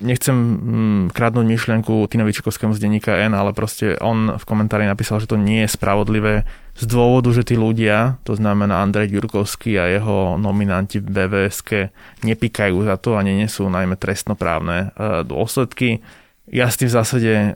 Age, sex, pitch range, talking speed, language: 20-39, male, 100-115 Hz, 155 wpm, Slovak